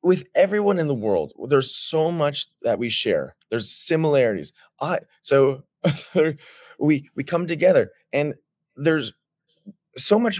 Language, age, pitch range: English, 20-39, 130-175 Hz